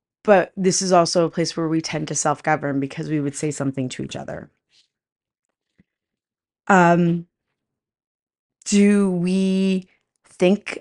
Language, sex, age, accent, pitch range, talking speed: English, female, 30-49, American, 155-175 Hz, 130 wpm